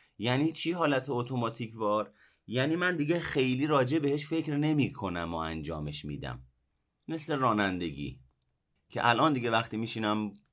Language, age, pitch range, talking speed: Persian, 30-49, 85-125 Hz, 135 wpm